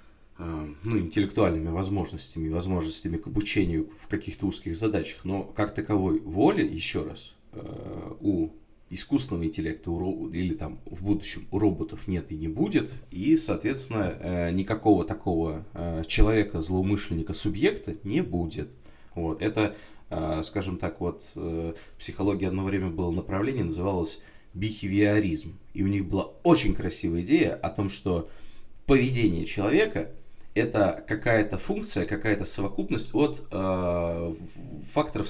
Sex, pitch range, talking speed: male, 85-105 Hz, 125 wpm